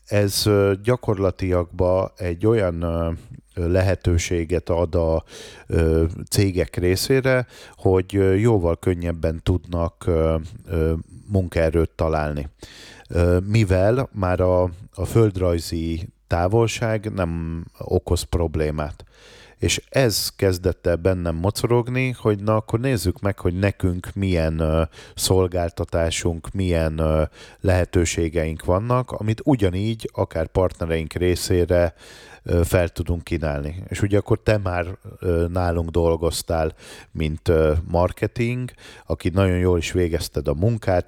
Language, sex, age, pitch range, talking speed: Hungarian, male, 30-49, 85-105 Hz, 95 wpm